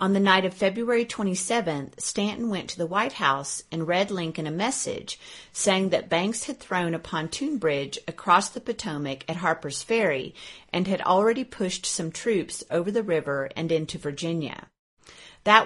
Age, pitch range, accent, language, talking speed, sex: 40-59, 160-210 Hz, American, English, 170 wpm, female